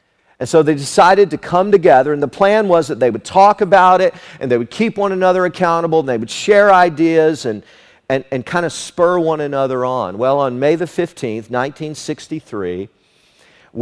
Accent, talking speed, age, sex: American, 190 wpm, 50-69, male